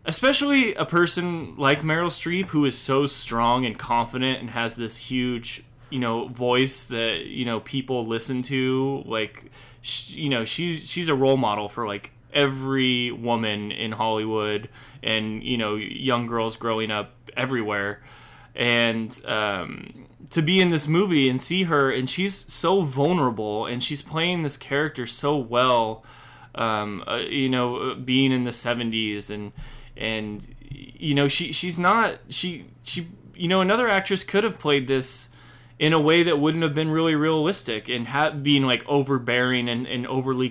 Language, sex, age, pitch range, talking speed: English, male, 20-39, 120-150 Hz, 165 wpm